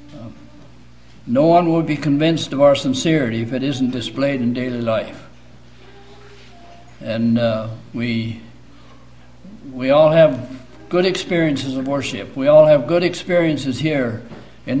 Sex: male